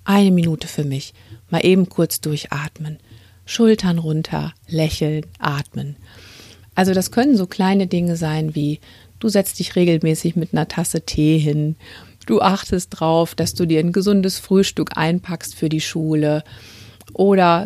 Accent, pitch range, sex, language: German, 145-185 Hz, female, German